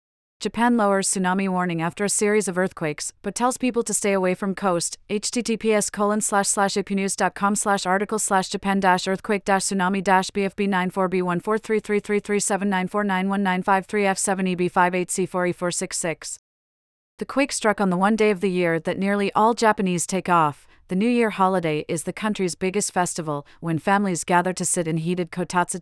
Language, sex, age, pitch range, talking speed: English, female, 30-49, 175-205 Hz, 155 wpm